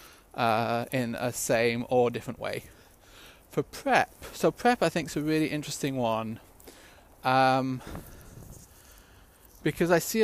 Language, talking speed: English, 130 wpm